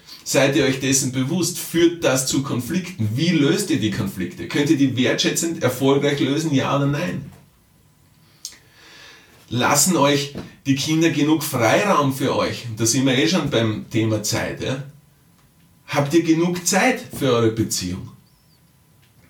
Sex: male